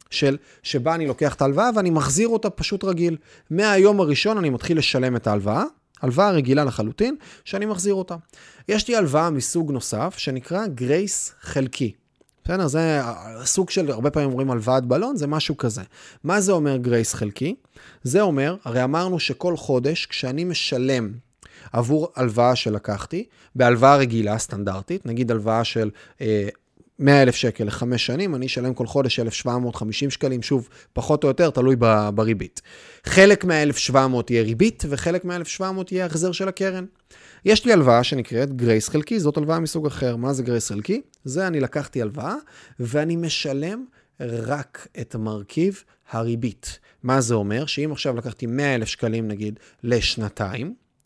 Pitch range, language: 120-170 Hz, Hebrew